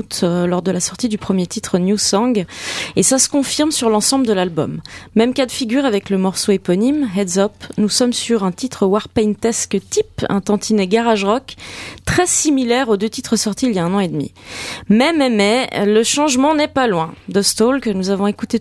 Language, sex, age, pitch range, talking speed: French, female, 20-39, 200-255 Hz, 215 wpm